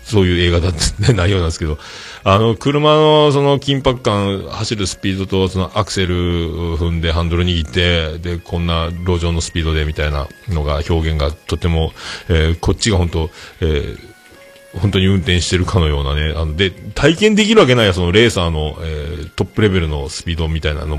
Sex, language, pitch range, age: male, Japanese, 80-120 Hz, 40-59